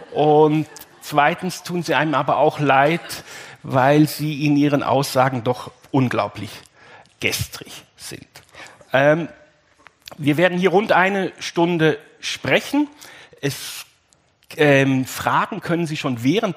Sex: male